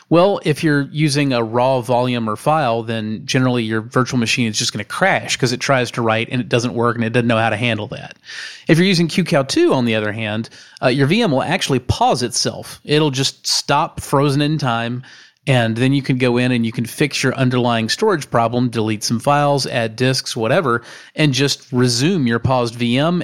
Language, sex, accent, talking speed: English, male, American, 215 wpm